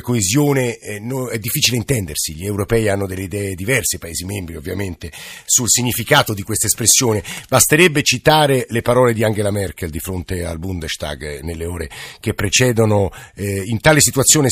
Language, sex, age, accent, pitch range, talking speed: Italian, male, 50-69, native, 100-125 Hz, 155 wpm